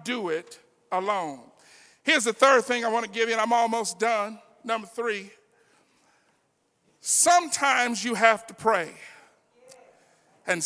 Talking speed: 135 wpm